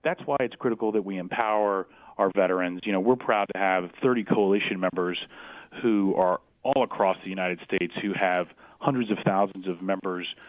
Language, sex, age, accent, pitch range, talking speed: English, male, 30-49, American, 95-115 Hz, 185 wpm